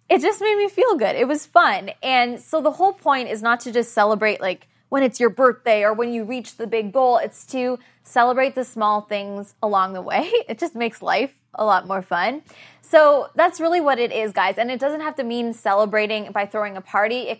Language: English